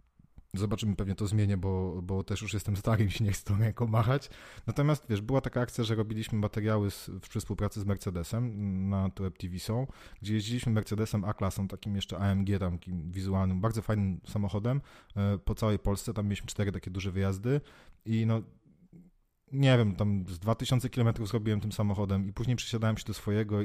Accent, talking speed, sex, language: native, 185 wpm, male, Polish